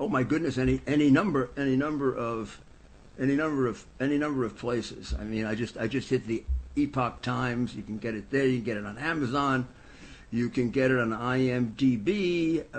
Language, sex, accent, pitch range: English, male, American, 110-135 Hz